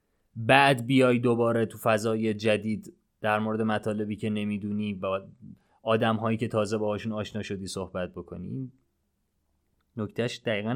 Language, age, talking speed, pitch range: Persian, 30-49, 135 wpm, 105-140 Hz